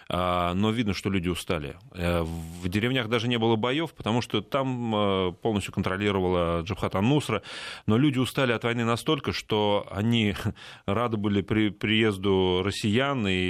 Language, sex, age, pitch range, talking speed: Russian, male, 30-49, 100-125 Hz, 140 wpm